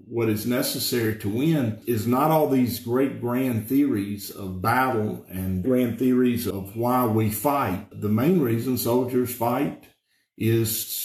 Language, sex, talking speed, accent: English, male, 145 wpm, American